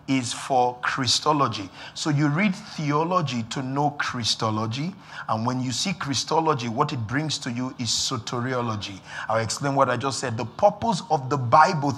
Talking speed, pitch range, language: 165 wpm, 130-175 Hz, English